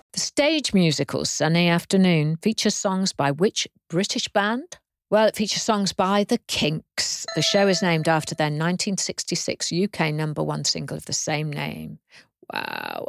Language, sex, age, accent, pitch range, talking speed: English, female, 50-69, British, 165-230 Hz, 155 wpm